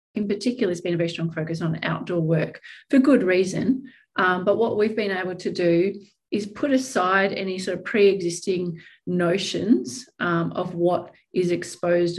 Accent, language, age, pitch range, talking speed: Australian, English, 40-59, 175-210 Hz, 170 wpm